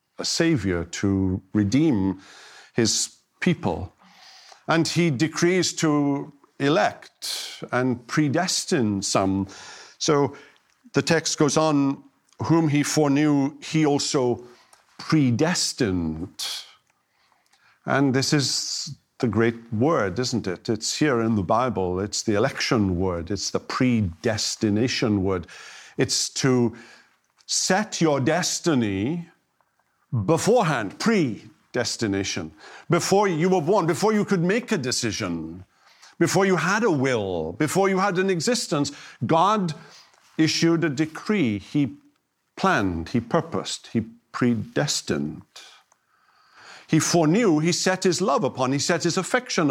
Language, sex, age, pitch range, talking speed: English, male, 50-69, 115-165 Hz, 115 wpm